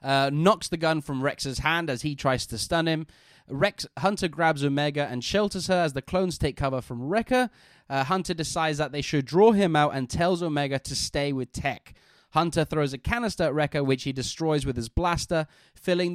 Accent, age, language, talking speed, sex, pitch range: British, 20-39, English, 210 wpm, male, 140-170 Hz